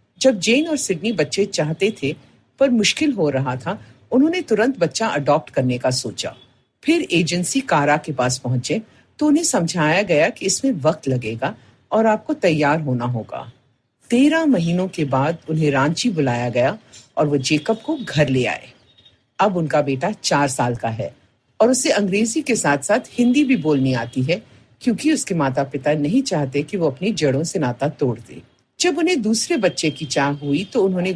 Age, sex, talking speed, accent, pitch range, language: 50-69, female, 180 wpm, native, 135-225 Hz, Hindi